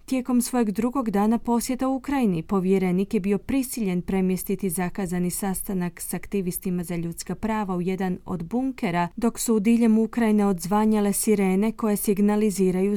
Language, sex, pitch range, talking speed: Croatian, female, 180-230 Hz, 150 wpm